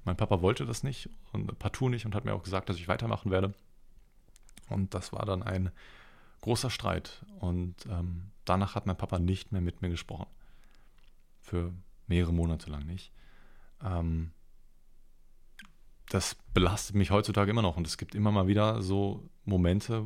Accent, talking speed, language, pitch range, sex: German, 165 wpm, German, 90-110 Hz, male